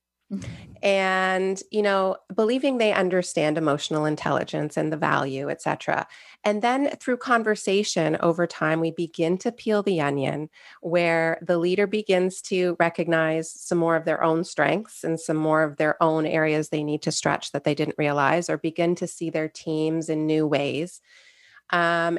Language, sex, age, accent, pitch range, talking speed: English, female, 30-49, American, 155-210 Hz, 165 wpm